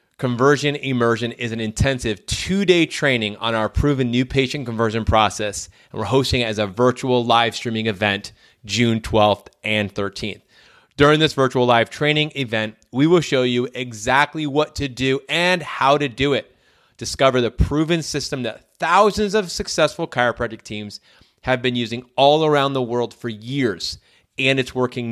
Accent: American